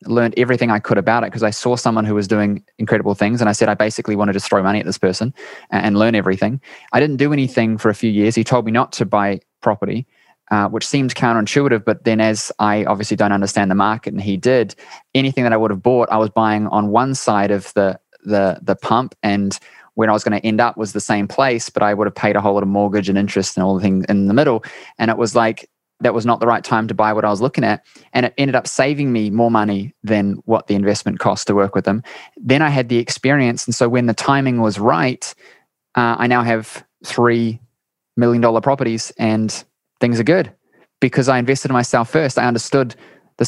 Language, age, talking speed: English, 20-39, 240 wpm